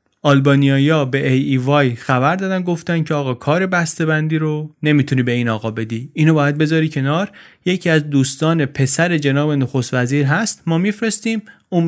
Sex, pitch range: male, 130-165 Hz